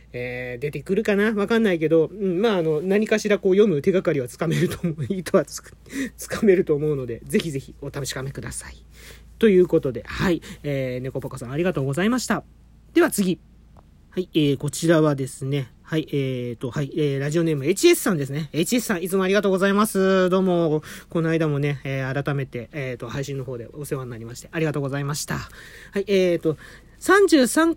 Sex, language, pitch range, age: male, Japanese, 145-210 Hz, 40-59